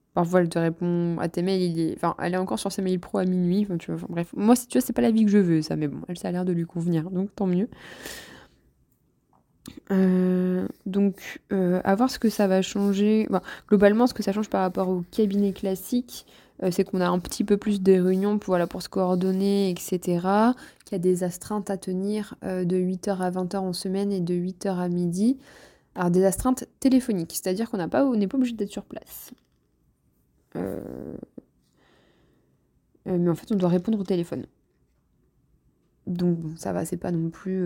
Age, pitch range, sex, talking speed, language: 20-39, 180-210 Hz, female, 210 wpm, French